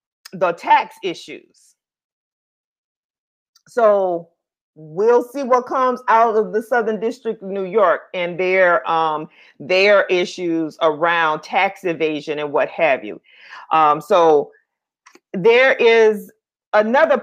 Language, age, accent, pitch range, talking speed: English, 40-59, American, 170-240 Hz, 115 wpm